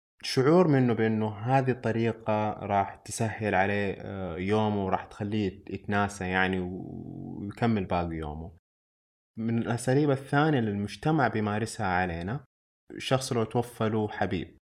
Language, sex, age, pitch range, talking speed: Arabic, male, 20-39, 100-125 Hz, 110 wpm